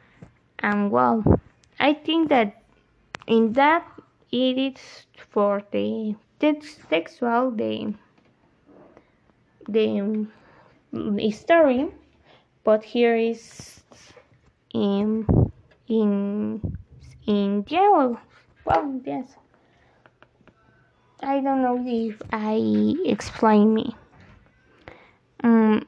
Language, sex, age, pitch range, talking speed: Spanish, female, 20-39, 215-270 Hz, 80 wpm